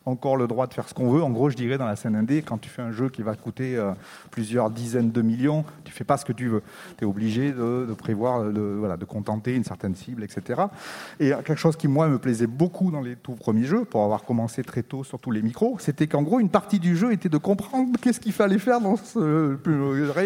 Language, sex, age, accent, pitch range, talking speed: French, male, 30-49, French, 125-170 Hz, 265 wpm